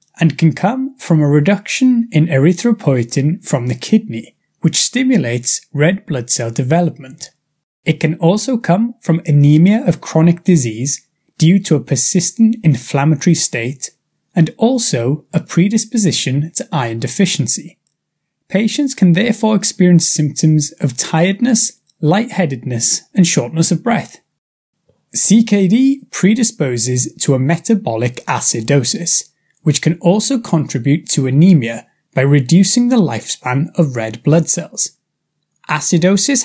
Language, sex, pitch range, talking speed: English, male, 145-200 Hz, 120 wpm